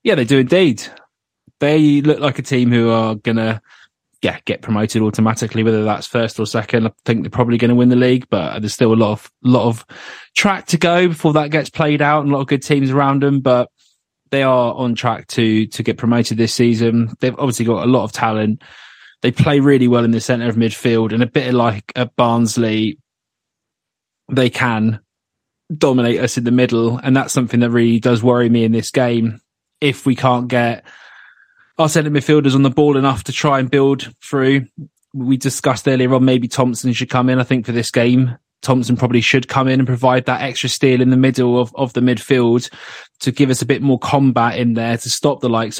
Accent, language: British, English